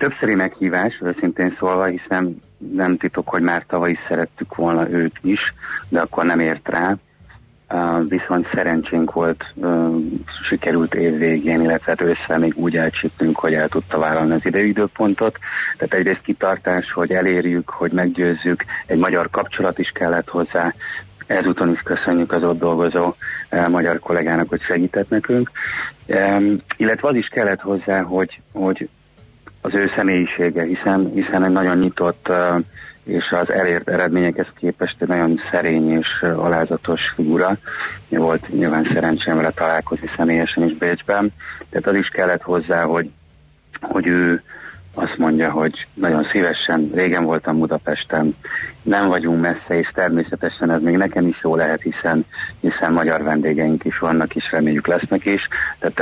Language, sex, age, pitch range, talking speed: Hungarian, male, 30-49, 80-90 Hz, 140 wpm